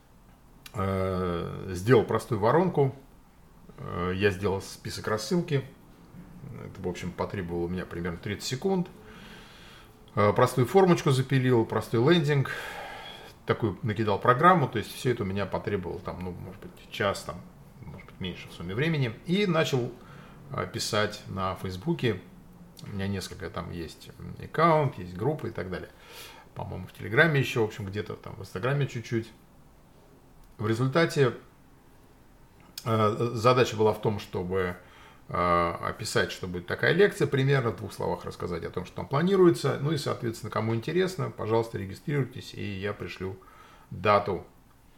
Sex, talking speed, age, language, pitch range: male, 135 wpm, 40-59, Russian, 95-135 Hz